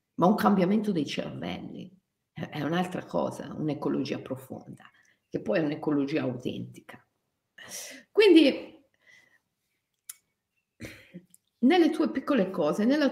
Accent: native